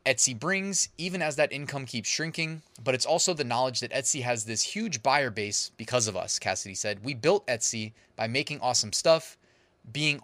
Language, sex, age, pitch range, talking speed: English, male, 20-39, 110-145 Hz, 195 wpm